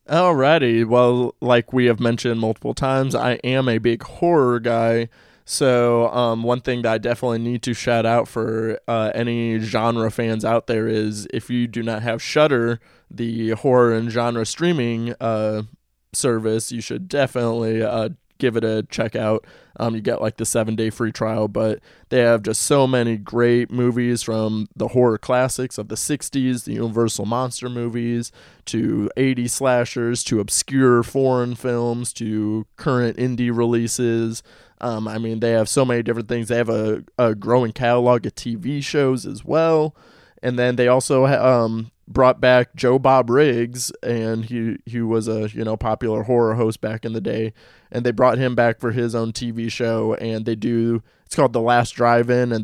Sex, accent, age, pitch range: male, American, 20-39, 110-125 Hz